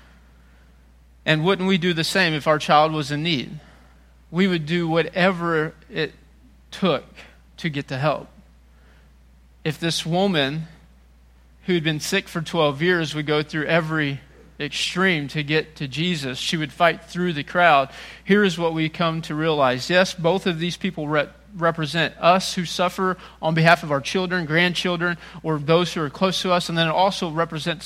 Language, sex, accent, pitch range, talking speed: English, male, American, 140-170 Hz, 180 wpm